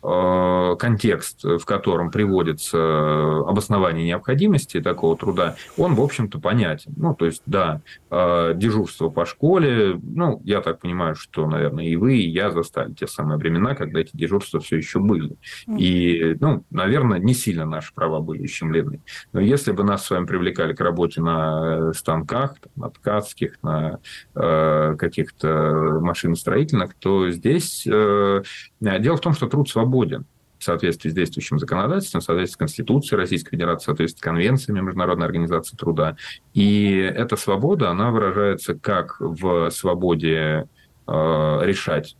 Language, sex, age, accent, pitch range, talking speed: Russian, male, 20-39, native, 80-115 Hz, 145 wpm